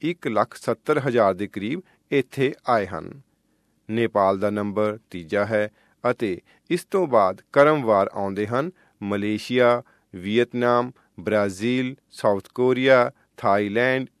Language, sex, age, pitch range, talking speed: Punjabi, male, 40-59, 110-145 Hz, 105 wpm